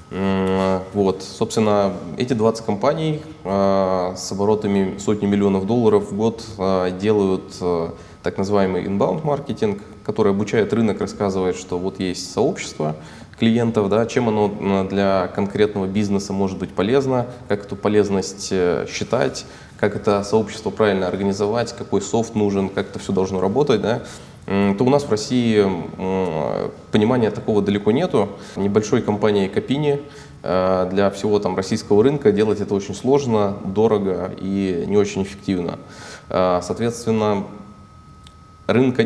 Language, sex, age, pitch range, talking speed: Russian, male, 20-39, 95-110 Hz, 120 wpm